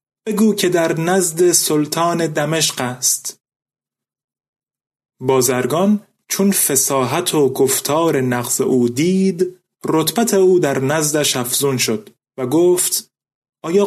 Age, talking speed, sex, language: 30-49, 105 wpm, male, Persian